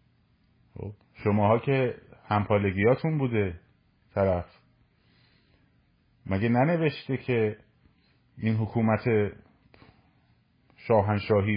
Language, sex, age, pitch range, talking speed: Persian, male, 30-49, 100-120 Hz, 55 wpm